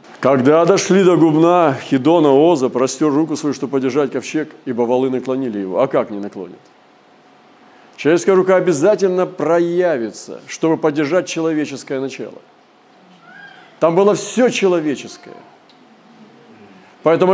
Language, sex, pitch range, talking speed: Russian, male, 130-170 Hz, 115 wpm